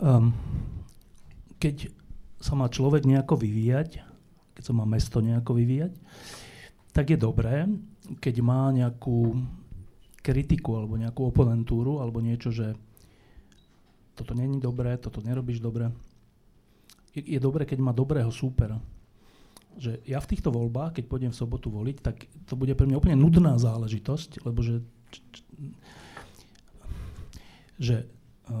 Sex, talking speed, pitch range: male, 120 wpm, 115-135 Hz